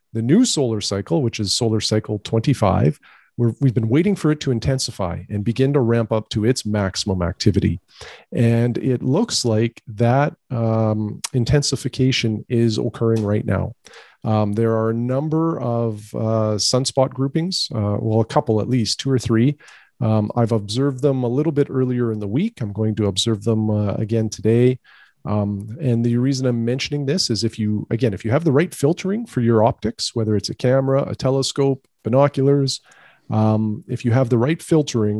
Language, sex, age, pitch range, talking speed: English, male, 40-59, 110-130 Hz, 180 wpm